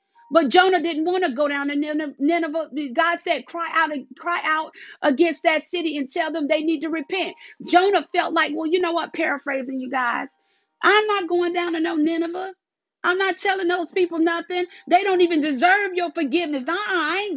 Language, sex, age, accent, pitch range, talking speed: English, female, 40-59, American, 315-355 Hz, 200 wpm